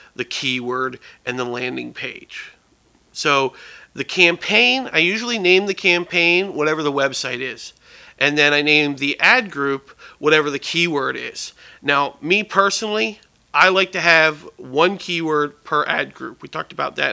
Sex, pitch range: male, 135-180 Hz